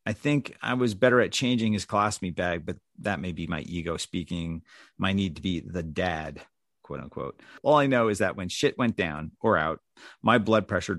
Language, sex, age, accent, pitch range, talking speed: English, male, 40-59, American, 85-110 Hz, 215 wpm